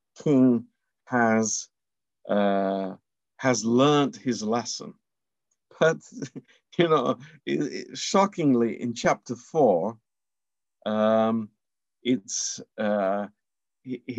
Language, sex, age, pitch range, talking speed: Romanian, male, 50-69, 105-135 Hz, 80 wpm